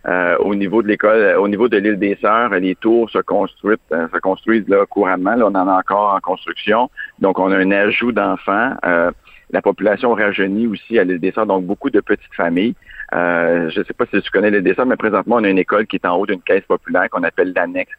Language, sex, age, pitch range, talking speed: French, male, 50-69, 90-110 Hz, 235 wpm